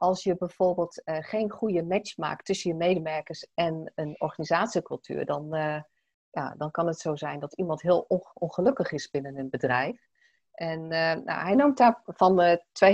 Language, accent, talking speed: Dutch, Dutch, 175 wpm